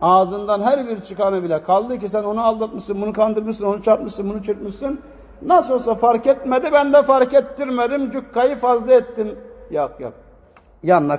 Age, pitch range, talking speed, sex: 60-79, 200-250 Hz, 160 wpm, male